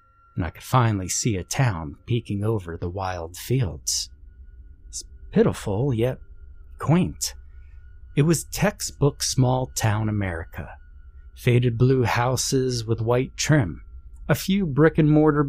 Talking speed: 115 wpm